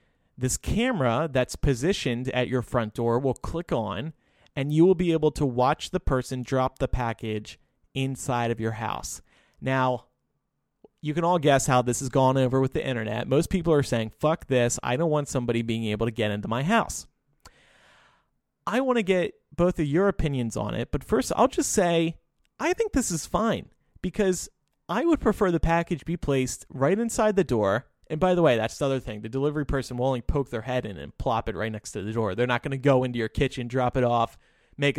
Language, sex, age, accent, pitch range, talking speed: English, male, 30-49, American, 120-165 Hz, 215 wpm